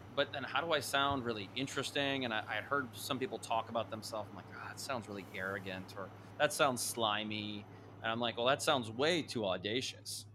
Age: 30-49